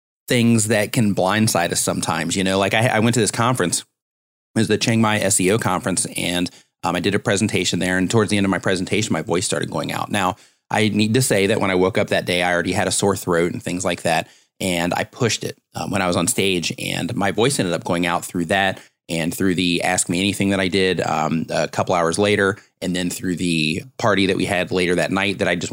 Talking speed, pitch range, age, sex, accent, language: 255 wpm, 90-105 Hz, 30-49, male, American, English